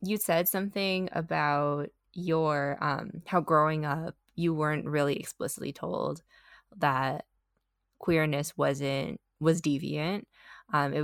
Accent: American